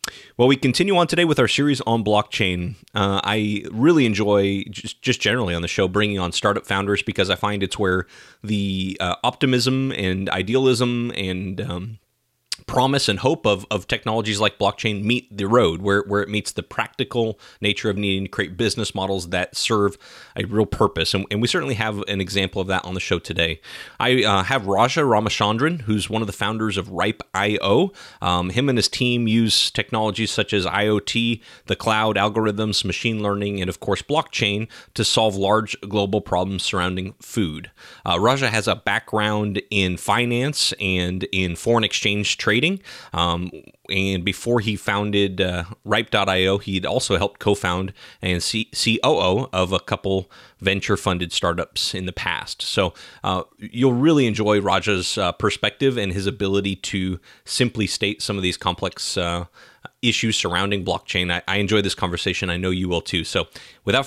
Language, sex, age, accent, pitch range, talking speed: English, male, 30-49, American, 95-115 Hz, 170 wpm